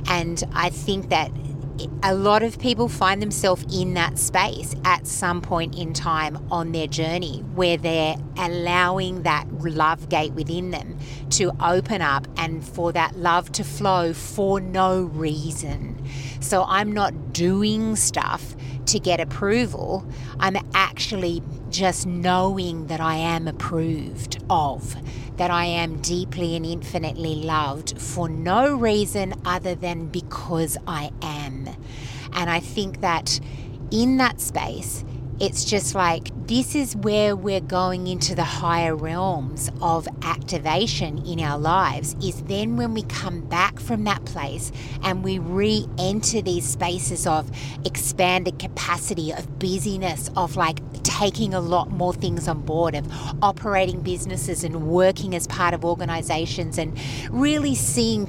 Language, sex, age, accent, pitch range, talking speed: English, female, 40-59, Australian, 140-180 Hz, 140 wpm